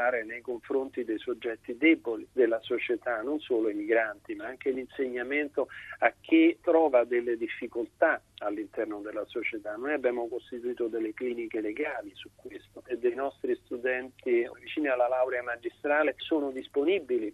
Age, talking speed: 40-59, 140 wpm